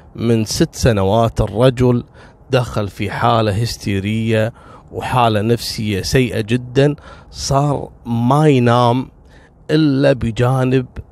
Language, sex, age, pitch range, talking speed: Arabic, male, 30-49, 110-140 Hz, 90 wpm